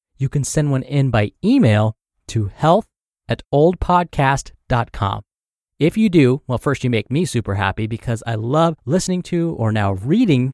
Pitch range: 110-170 Hz